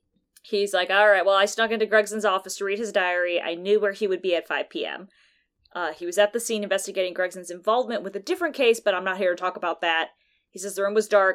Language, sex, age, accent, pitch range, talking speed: English, female, 20-39, American, 175-220 Hz, 260 wpm